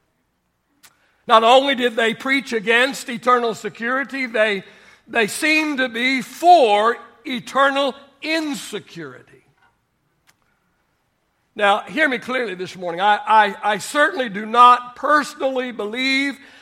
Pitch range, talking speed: 205-260 Hz, 110 wpm